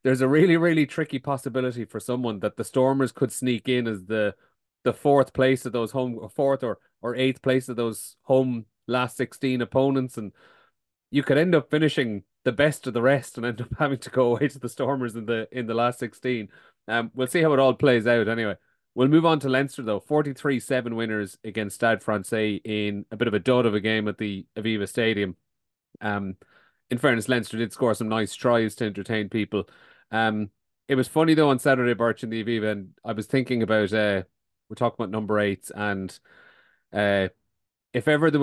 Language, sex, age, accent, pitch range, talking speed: English, male, 30-49, Irish, 105-130 Hz, 205 wpm